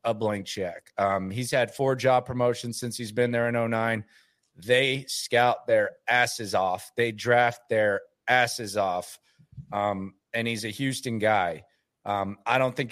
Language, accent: English, American